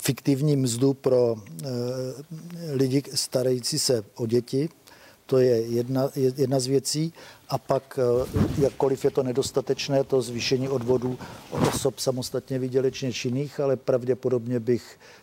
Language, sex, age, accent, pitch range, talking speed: Czech, male, 50-69, native, 120-135 Hz, 120 wpm